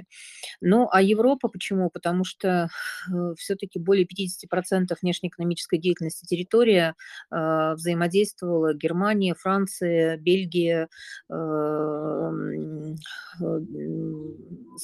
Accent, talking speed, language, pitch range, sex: native, 80 wpm, Russian, 165-195 Hz, female